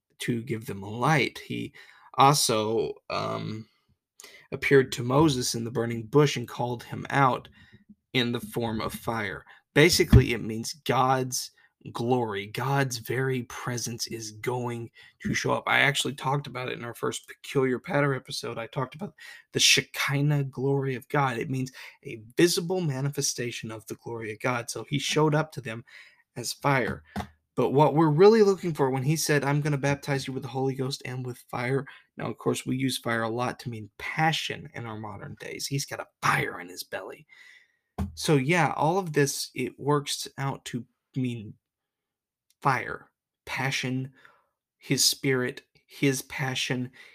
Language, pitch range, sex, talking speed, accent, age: English, 120-145 Hz, male, 170 wpm, American, 20-39